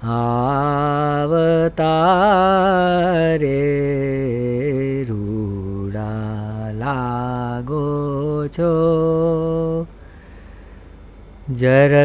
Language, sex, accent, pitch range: Gujarati, female, native, 145-205 Hz